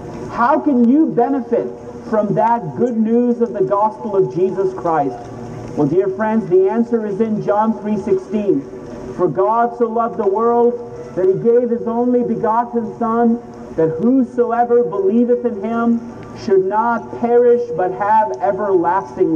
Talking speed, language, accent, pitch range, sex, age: 145 wpm, English, American, 180-240 Hz, male, 40-59